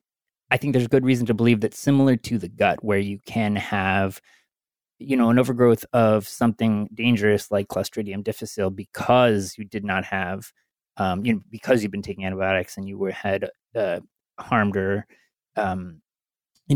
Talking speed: 170 wpm